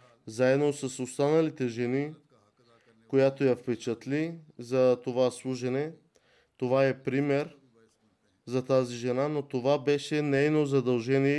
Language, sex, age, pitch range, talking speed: Bulgarian, male, 20-39, 125-145 Hz, 110 wpm